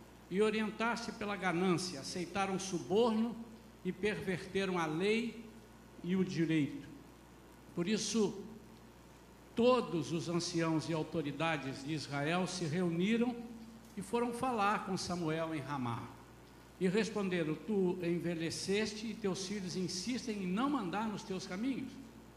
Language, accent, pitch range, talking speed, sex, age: Portuguese, Brazilian, 155-210 Hz, 125 wpm, male, 60-79